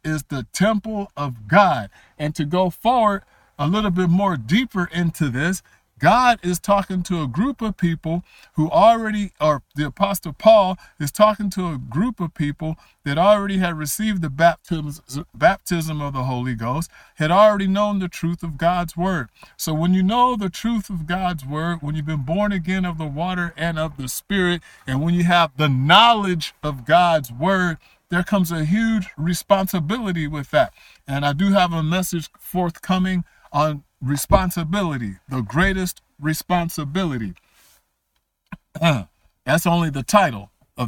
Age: 50-69